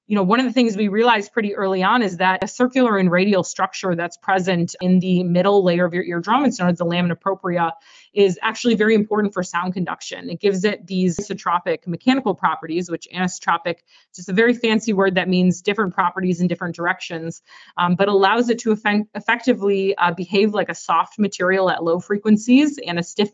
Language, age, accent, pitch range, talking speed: English, 30-49, American, 175-210 Hz, 205 wpm